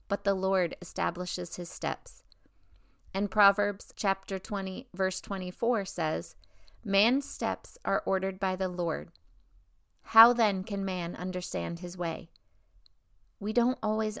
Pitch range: 180-215 Hz